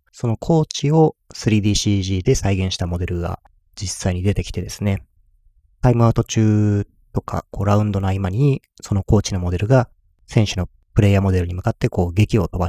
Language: Japanese